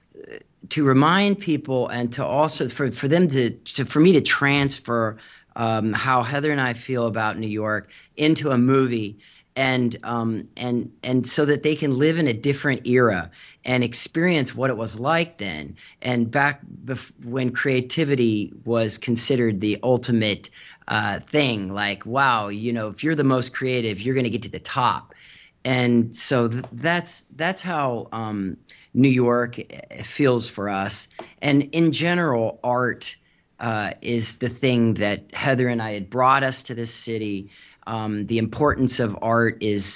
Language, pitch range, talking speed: English, 110-135 Hz, 165 wpm